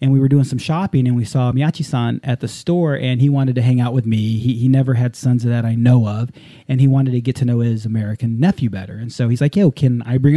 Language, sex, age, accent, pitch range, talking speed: English, male, 30-49, American, 120-145 Hz, 290 wpm